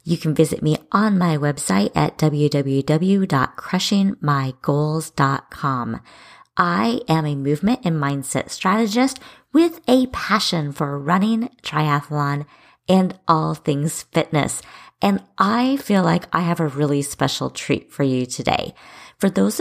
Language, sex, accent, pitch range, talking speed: English, female, American, 145-190 Hz, 125 wpm